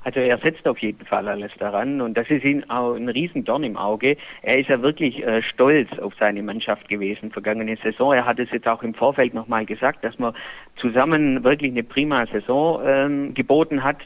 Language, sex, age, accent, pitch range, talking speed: German, male, 50-69, German, 125-165 Hz, 205 wpm